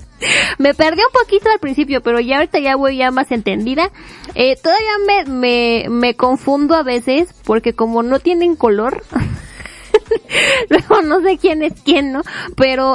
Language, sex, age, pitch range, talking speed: Spanish, female, 20-39, 230-315 Hz, 160 wpm